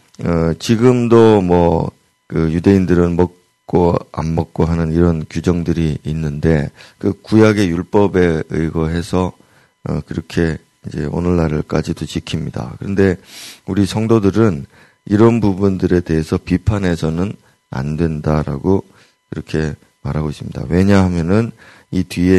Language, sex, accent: Korean, male, native